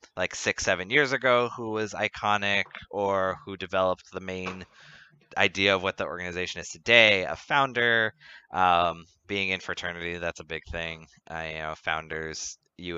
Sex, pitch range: male, 85-105 Hz